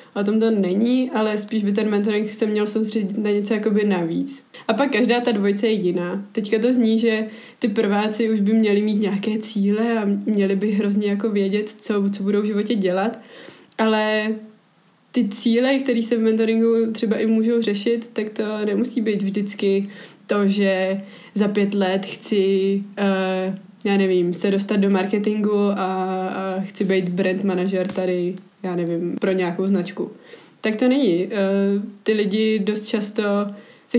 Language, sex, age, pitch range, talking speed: Czech, female, 20-39, 195-220 Hz, 170 wpm